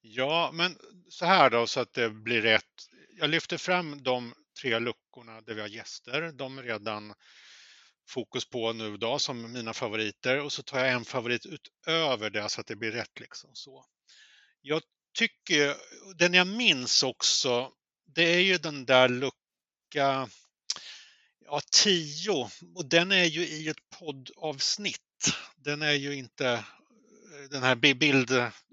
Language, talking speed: Swedish, 155 wpm